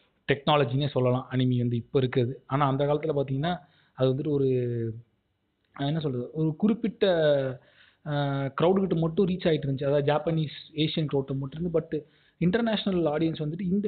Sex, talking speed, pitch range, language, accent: male, 145 wpm, 125-155 Hz, Tamil, native